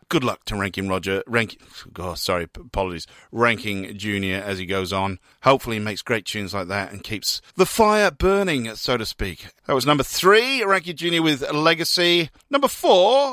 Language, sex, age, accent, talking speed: English, male, 40-59, British, 175 wpm